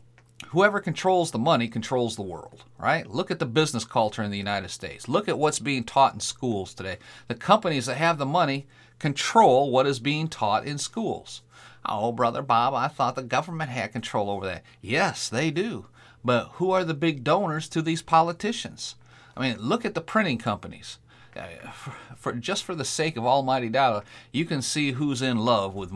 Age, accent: 40-59, American